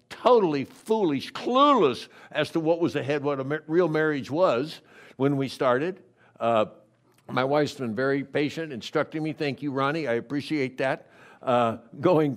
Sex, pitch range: male, 130-160 Hz